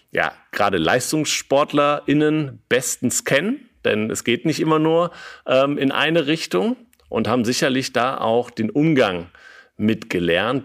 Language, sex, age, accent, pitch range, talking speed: German, male, 50-69, German, 100-130 Hz, 130 wpm